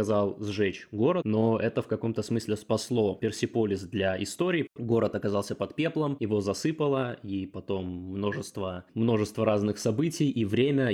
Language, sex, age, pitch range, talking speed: Russian, male, 20-39, 100-115 Hz, 135 wpm